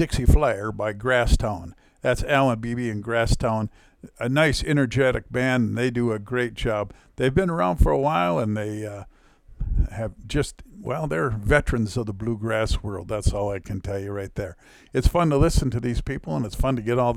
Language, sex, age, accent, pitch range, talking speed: English, male, 50-69, American, 105-130 Hz, 205 wpm